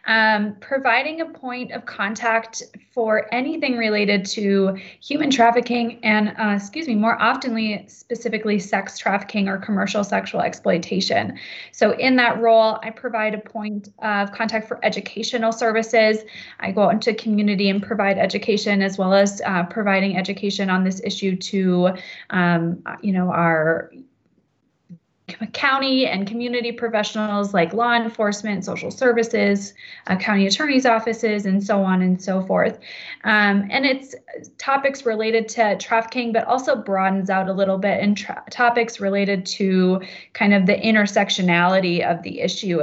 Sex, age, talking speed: female, 20-39, 150 wpm